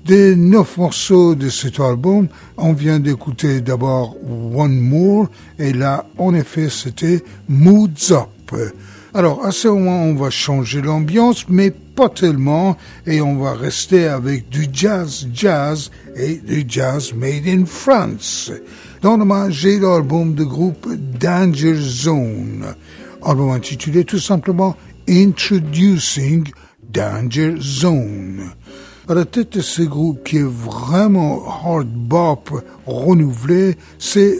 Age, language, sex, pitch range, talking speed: 60-79, English, male, 135-180 Hz, 140 wpm